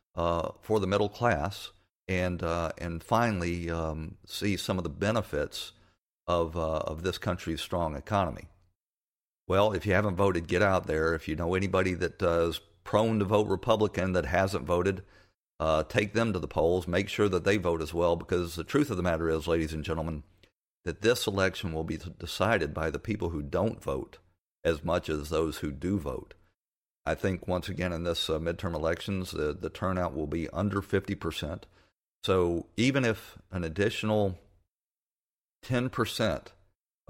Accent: American